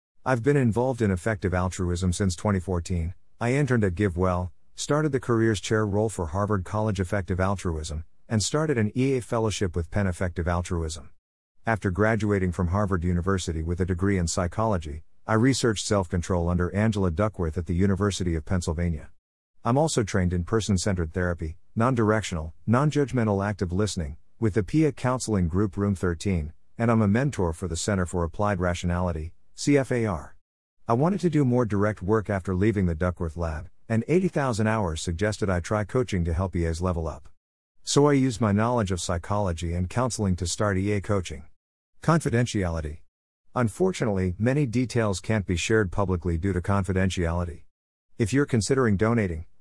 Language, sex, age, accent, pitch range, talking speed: English, male, 50-69, American, 90-115 Hz, 160 wpm